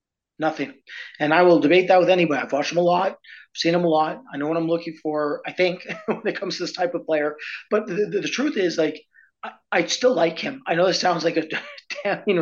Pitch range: 150-185 Hz